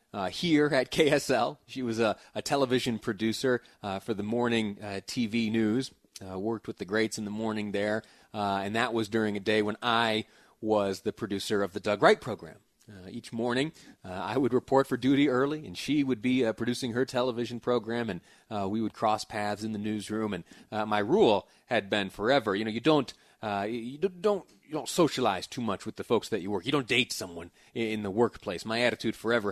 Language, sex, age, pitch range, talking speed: English, male, 30-49, 105-125 Hz, 220 wpm